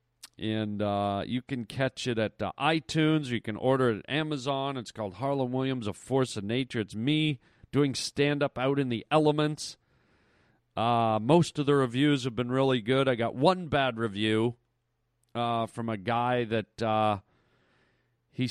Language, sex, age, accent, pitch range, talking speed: English, male, 40-59, American, 115-140 Hz, 170 wpm